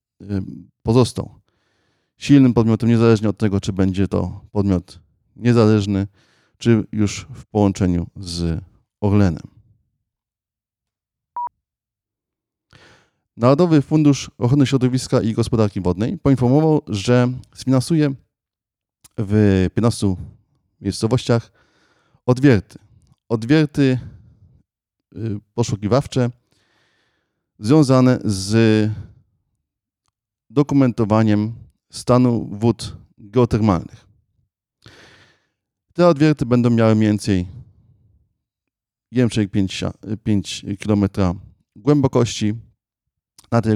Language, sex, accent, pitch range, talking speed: Polish, male, native, 100-125 Hz, 70 wpm